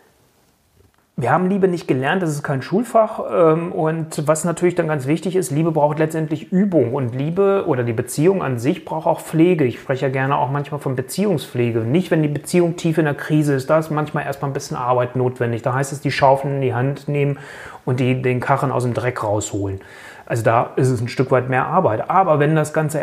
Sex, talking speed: male, 220 wpm